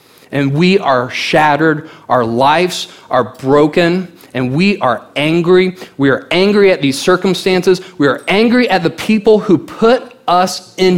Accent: American